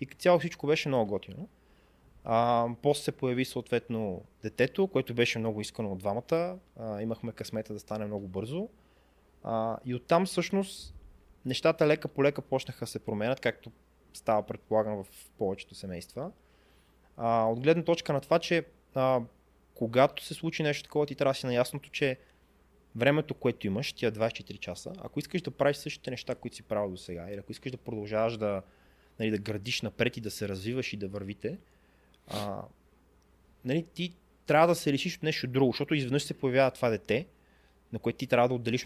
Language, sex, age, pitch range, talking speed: Bulgarian, male, 20-39, 110-150 Hz, 175 wpm